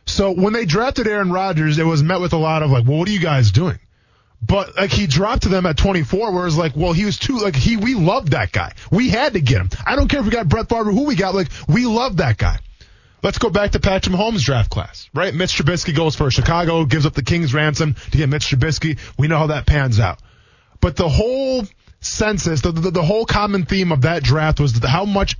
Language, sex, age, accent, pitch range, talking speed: English, male, 20-39, American, 125-180 Hz, 260 wpm